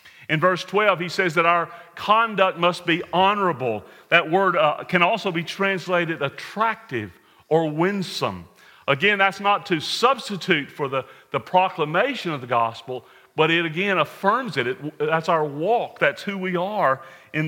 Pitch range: 155-195 Hz